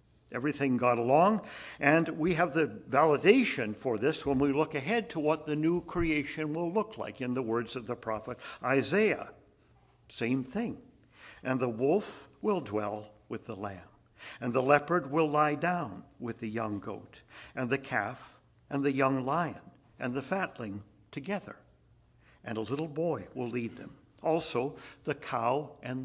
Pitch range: 115-155 Hz